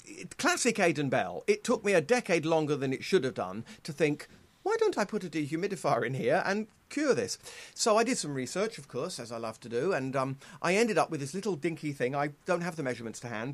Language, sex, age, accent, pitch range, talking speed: English, male, 40-59, British, 135-195 Hz, 250 wpm